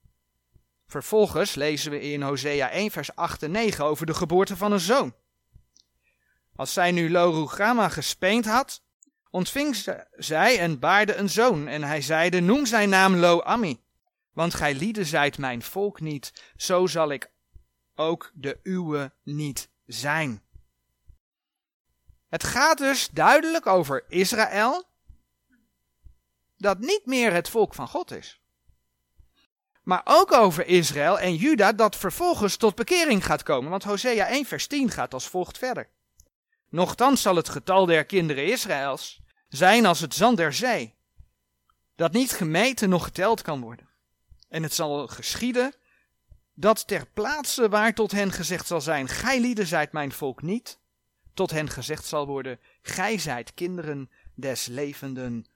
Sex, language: male, Dutch